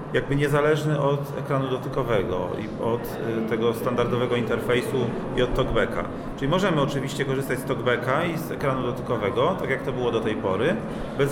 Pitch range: 120-140 Hz